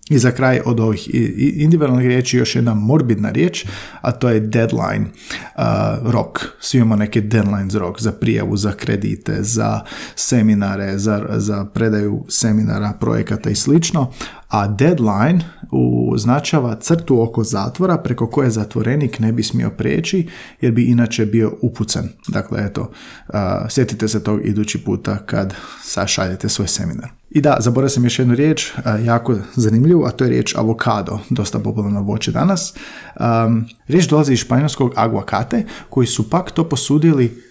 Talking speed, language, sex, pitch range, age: 155 wpm, Croatian, male, 105-130 Hz, 40-59